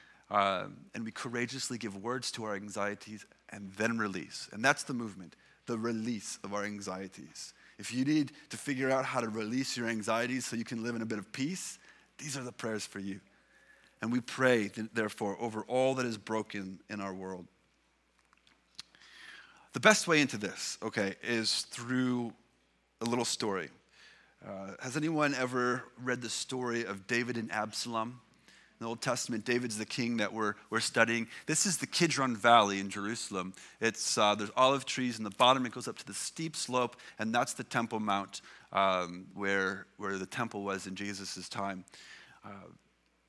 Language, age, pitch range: English, 30-49, 105-130 Hz